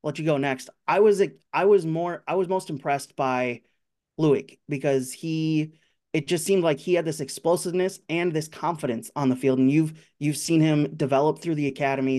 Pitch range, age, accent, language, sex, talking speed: 140-160 Hz, 30-49, American, English, male, 195 wpm